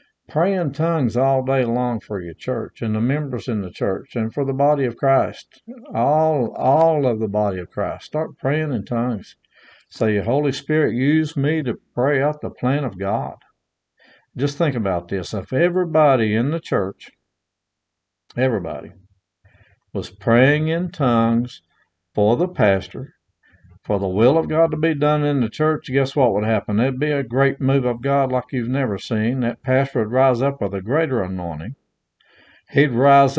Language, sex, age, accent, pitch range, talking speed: English, male, 60-79, American, 110-150 Hz, 180 wpm